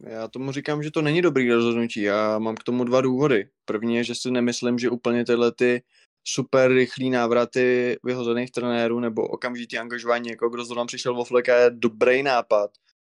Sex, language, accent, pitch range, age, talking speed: male, Czech, native, 115-125 Hz, 20-39, 190 wpm